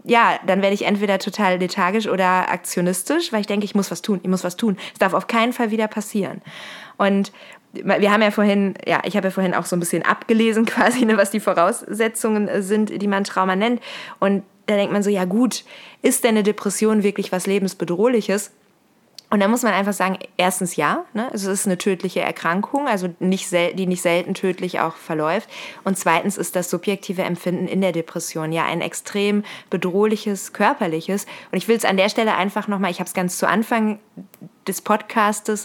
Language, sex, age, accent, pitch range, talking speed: German, female, 20-39, German, 185-215 Hz, 195 wpm